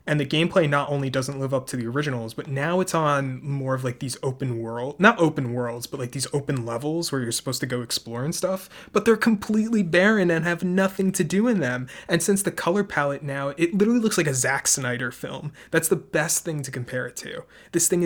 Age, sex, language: 20-39, male, English